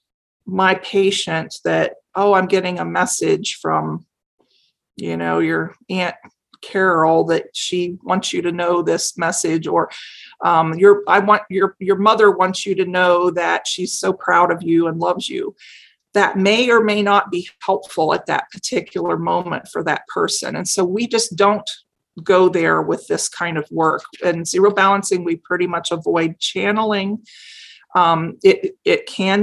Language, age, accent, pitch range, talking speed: English, 40-59, American, 175-210 Hz, 165 wpm